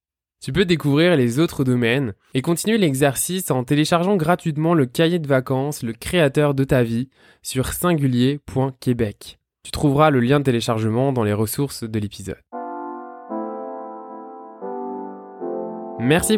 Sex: male